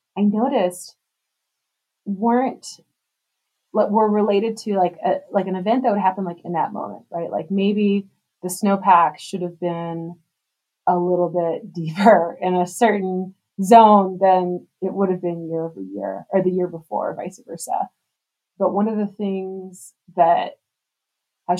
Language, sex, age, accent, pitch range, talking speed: English, female, 20-39, American, 170-195 Hz, 150 wpm